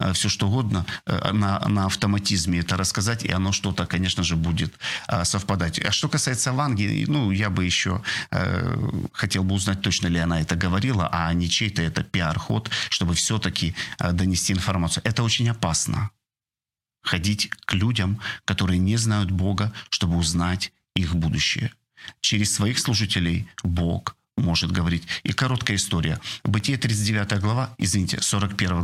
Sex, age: male, 40-59